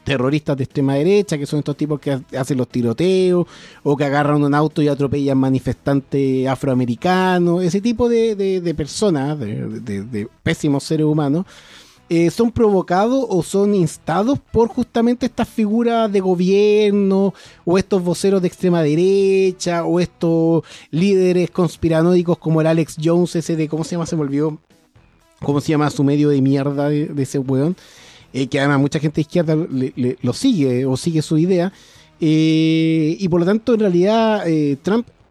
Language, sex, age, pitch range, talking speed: Spanish, male, 30-49, 140-185 Hz, 165 wpm